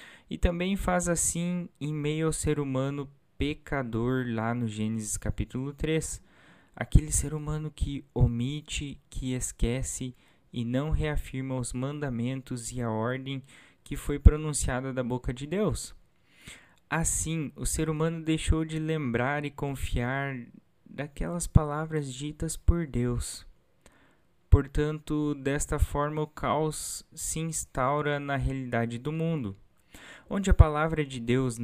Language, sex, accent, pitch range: Portuguese, male, Brazilian, 115-150 Hz